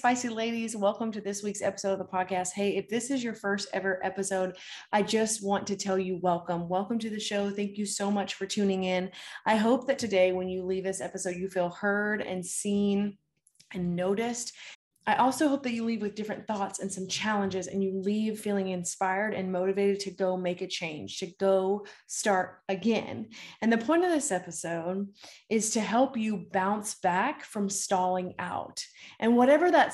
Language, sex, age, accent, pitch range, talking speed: English, female, 30-49, American, 185-230 Hz, 195 wpm